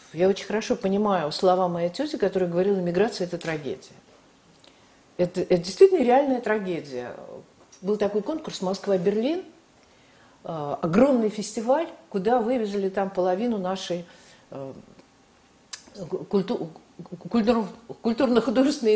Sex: female